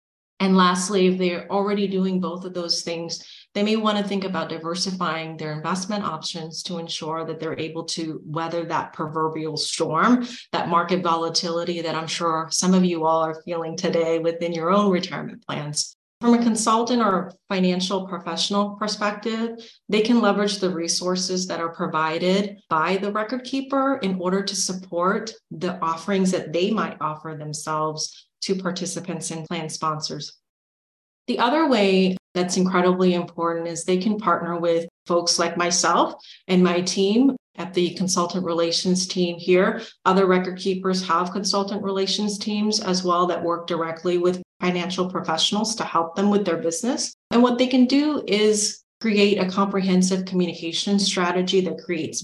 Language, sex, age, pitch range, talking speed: English, female, 30-49, 165-200 Hz, 160 wpm